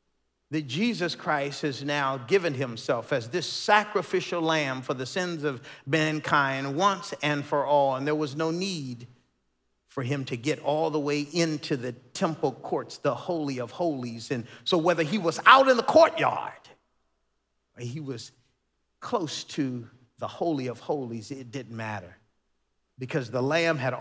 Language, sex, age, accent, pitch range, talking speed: English, male, 50-69, American, 110-150 Hz, 160 wpm